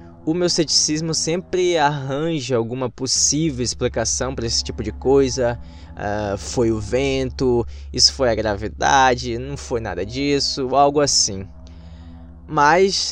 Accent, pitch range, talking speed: Brazilian, 115-155 Hz, 130 wpm